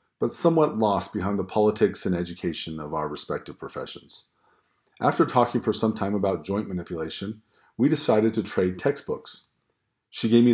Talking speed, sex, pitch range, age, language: 160 wpm, male, 95-120 Hz, 40-59, English